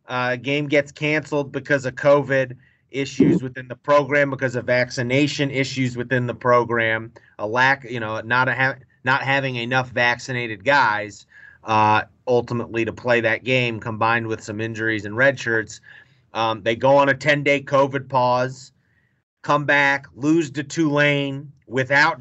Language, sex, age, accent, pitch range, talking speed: English, male, 30-49, American, 120-145 Hz, 150 wpm